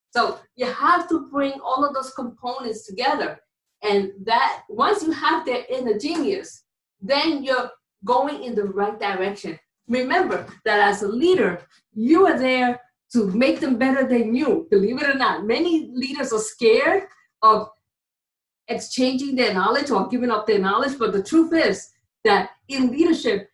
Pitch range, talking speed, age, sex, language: 215-295 Hz, 160 wpm, 50-69, female, English